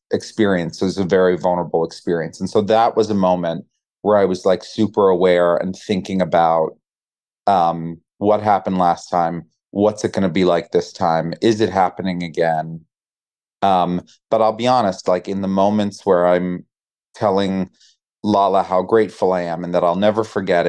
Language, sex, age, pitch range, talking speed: English, male, 30-49, 95-125 Hz, 175 wpm